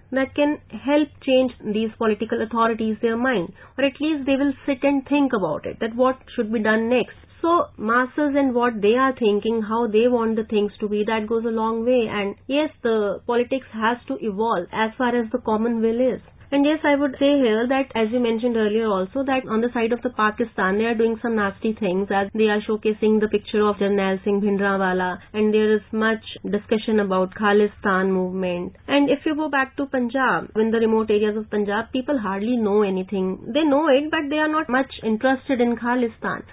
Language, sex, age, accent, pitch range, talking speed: English, female, 30-49, Indian, 205-245 Hz, 215 wpm